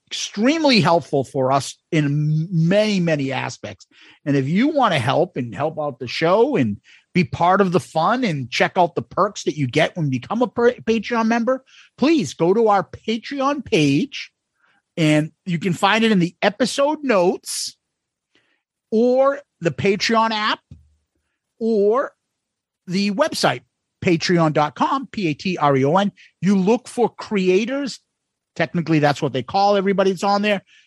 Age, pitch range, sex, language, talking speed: 50-69, 150-215 Hz, male, English, 150 wpm